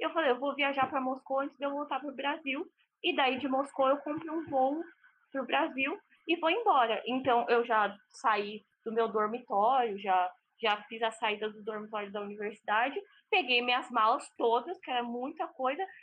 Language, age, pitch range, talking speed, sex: Portuguese, 10-29, 245-305 Hz, 195 wpm, female